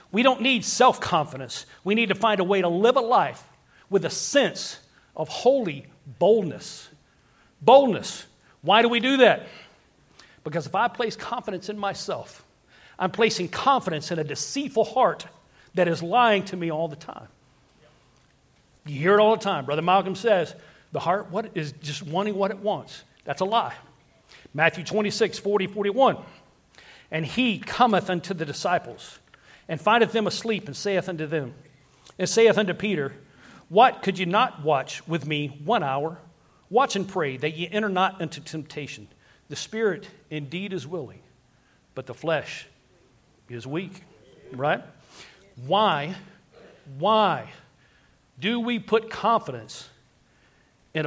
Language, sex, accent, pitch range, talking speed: English, male, American, 150-215 Hz, 150 wpm